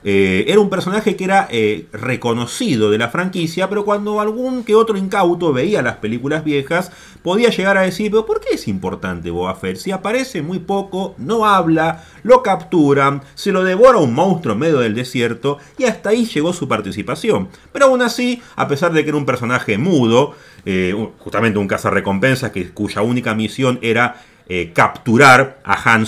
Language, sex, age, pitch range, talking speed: Spanish, male, 30-49, 115-190 Hz, 180 wpm